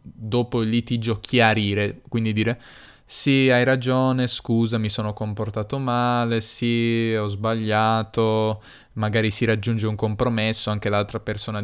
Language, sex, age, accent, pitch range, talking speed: Italian, male, 10-29, native, 110-125 Hz, 130 wpm